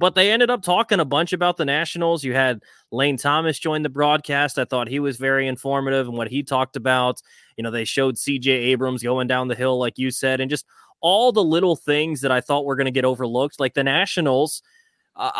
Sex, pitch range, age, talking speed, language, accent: male, 125-155 Hz, 20-39, 235 wpm, English, American